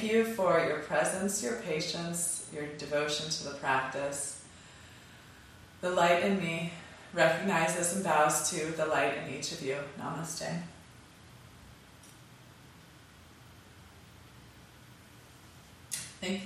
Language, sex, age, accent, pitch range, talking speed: English, female, 30-49, American, 150-195 Hz, 100 wpm